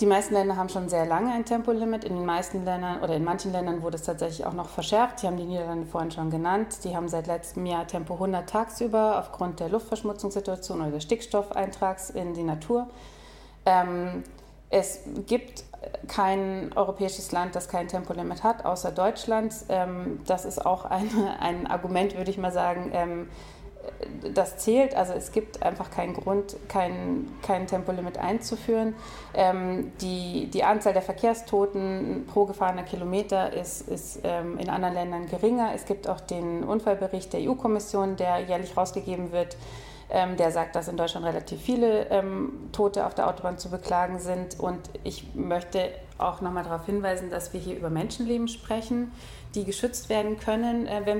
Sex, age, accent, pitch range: female, 30-49, German, 175-205 Hz